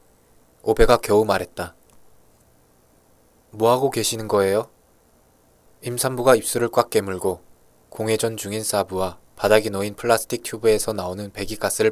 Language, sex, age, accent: Korean, male, 20-39, native